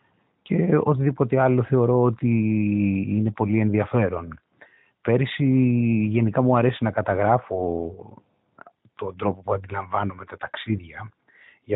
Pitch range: 100-120 Hz